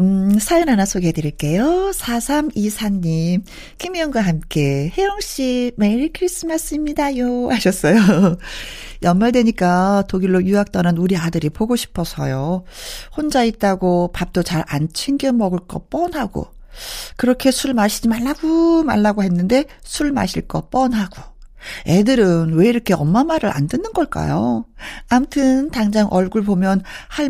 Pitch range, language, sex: 180-255 Hz, Korean, female